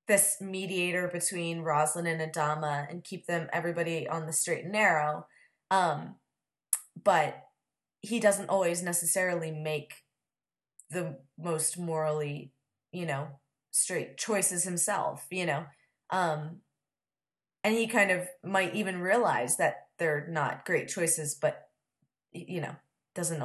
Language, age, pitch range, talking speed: English, 20-39, 155-195 Hz, 125 wpm